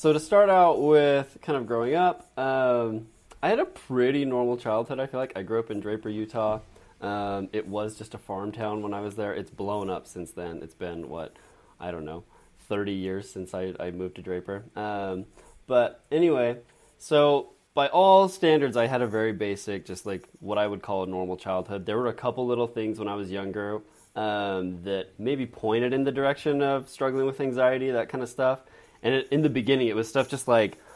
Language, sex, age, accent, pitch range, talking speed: English, male, 20-39, American, 95-125 Hz, 215 wpm